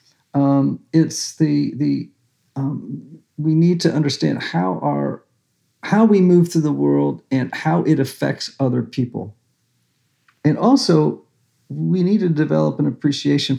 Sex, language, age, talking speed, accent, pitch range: male, English, 50-69, 135 wpm, American, 125-165 Hz